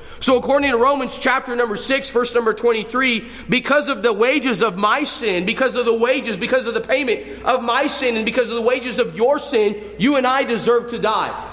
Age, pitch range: 40-59, 215-260 Hz